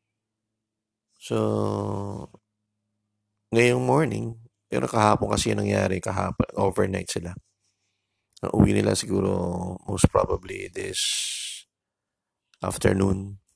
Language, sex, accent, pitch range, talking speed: Filipino, male, native, 90-105 Hz, 85 wpm